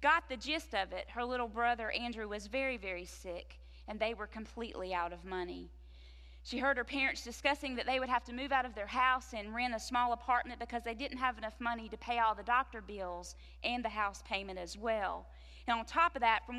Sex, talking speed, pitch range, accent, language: female, 230 wpm, 185-255 Hz, American, English